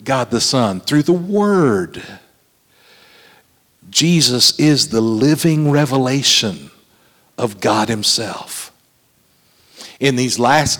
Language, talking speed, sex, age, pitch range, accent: English, 95 wpm, male, 50-69, 130-160 Hz, American